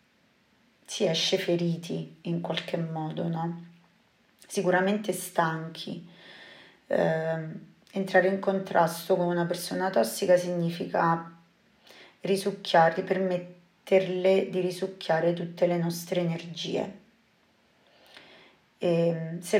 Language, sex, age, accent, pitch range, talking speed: Italian, female, 30-49, native, 170-190 Hz, 85 wpm